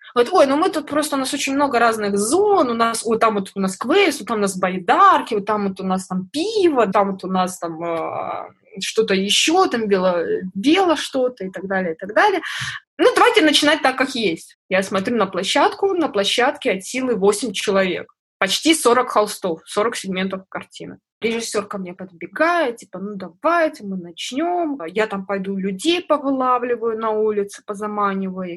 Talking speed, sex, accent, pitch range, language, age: 185 wpm, female, native, 190-255 Hz, Russian, 20-39